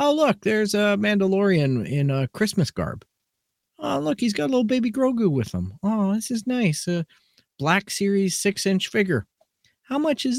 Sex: male